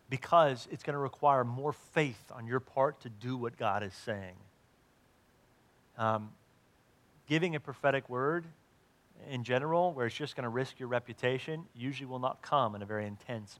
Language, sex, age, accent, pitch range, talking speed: English, male, 40-59, American, 115-145 Hz, 165 wpm